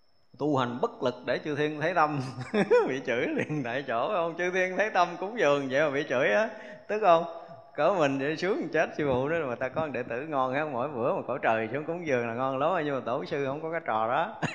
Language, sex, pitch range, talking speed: Vietnamese, male, 120-165 Hz, 260 wpm